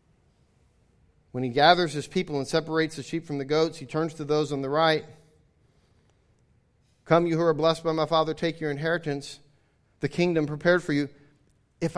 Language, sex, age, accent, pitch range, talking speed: English, male, 40-59, American, 155-190 Hz, 180 wpm